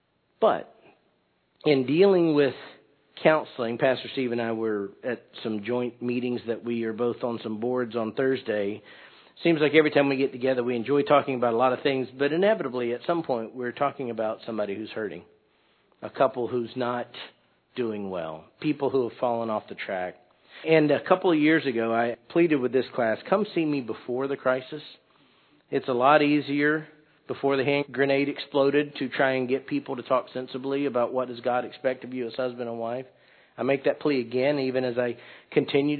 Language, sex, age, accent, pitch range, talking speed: English, male, 50-69, American, 120-145 Hz, 195 wpm